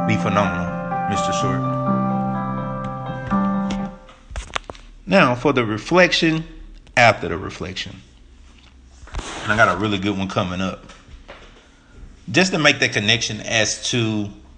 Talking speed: 110 wpm